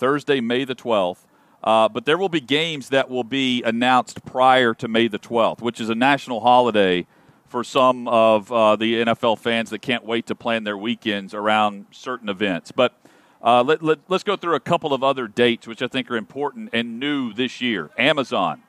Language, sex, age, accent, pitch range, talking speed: English, male, 40-59, American, 115-135 Hz, 195 wpm